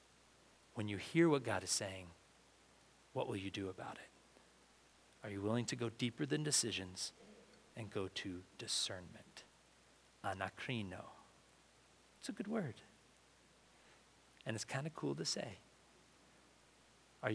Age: 40-59